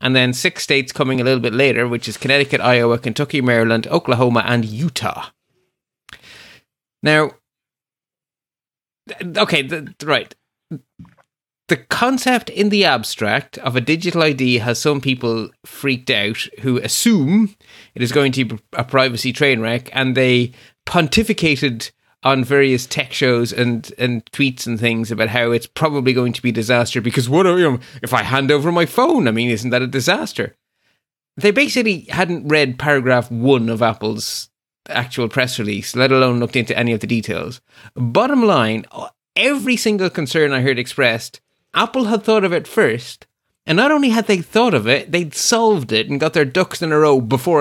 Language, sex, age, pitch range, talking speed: English, male, 30-49, 120-160 Hz, 170 wpm